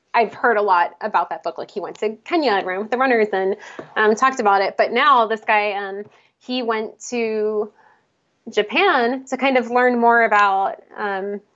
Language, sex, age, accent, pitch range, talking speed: English, female, 20-39, American, 205-235 Hz, 195 wpm